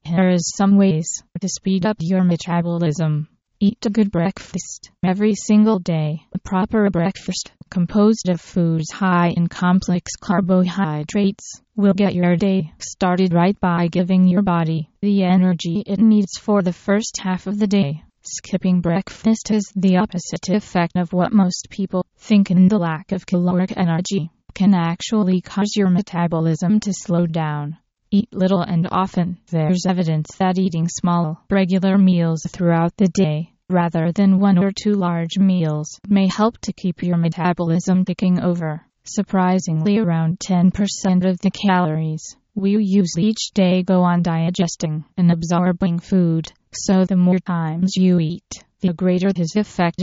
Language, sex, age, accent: English, female, 20-39, American